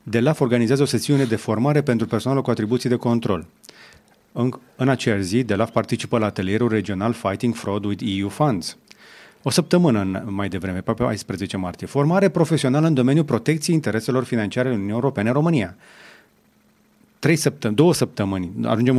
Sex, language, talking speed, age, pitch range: male, Romanian, 160 wpm, 30-49, 105-135 Hz